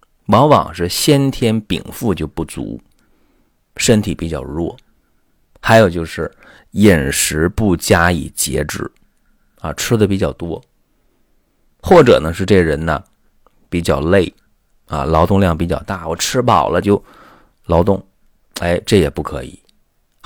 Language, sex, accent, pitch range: Chinese, male, native, 80-110 Hz